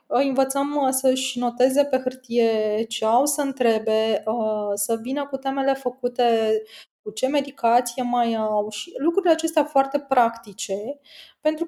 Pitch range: 215-270 Hz